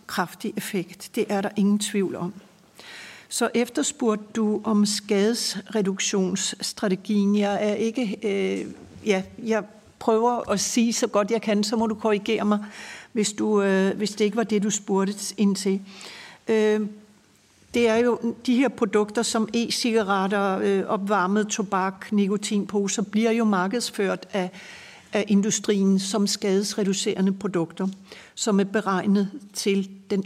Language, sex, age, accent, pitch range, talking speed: Danish, female, 60-79, native, 195-220 Hz, 140 wpm